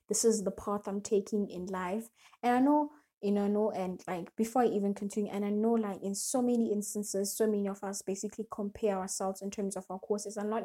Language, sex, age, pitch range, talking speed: English, female, 20-39, 200-235 Hz, 240 wpm